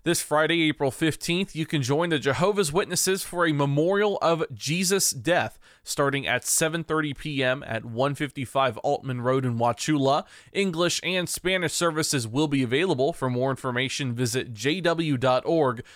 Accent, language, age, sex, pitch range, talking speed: American, English, 20-39, male, 135-170 Hz, 145 wpm